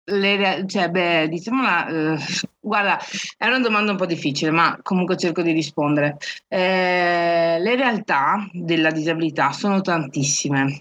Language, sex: Italian, female